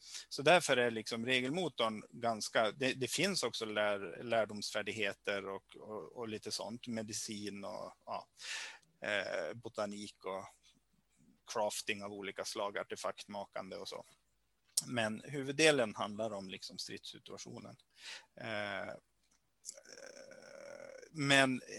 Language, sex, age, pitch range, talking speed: Swedish, male, 30-49, 110-155 Hz, 100 wpm